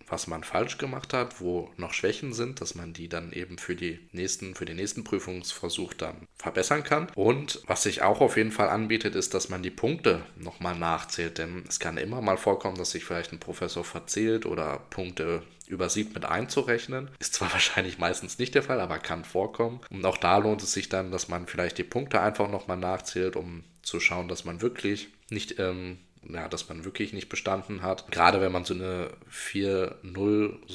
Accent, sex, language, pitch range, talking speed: German, male, German, 85-105 Hz, 200 wpm